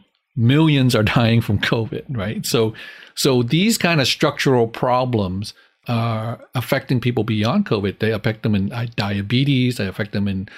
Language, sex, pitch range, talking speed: English, male, 110-130 Hz, 155 wpm